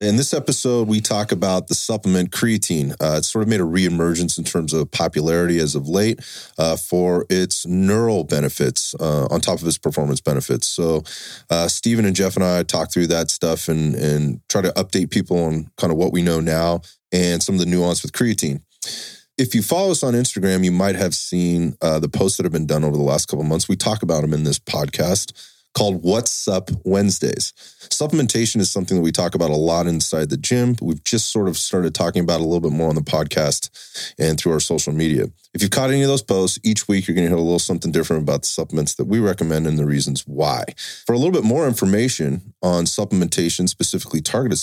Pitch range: 80-105 Hz